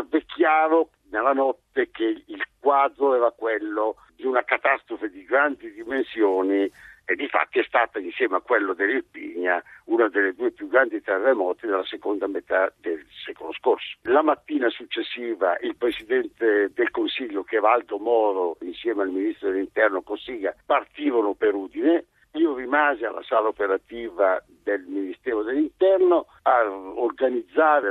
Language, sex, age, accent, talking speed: Italian, male, 60-79, native, 135 wpm